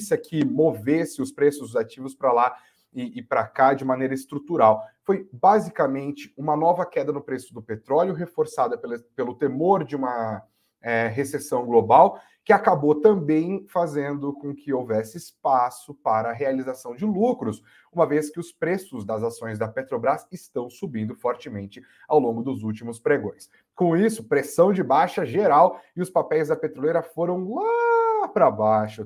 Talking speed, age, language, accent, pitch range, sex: 160 wpm, 30-49, Portuguese, Brazilian, 125-170 Hz, male